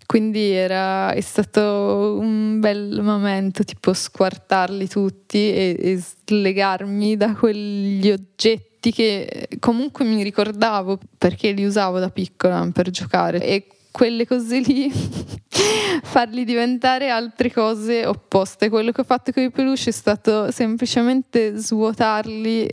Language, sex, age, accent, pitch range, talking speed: Italian, female, 20-39, native, 200-235 Hz, 125 wpm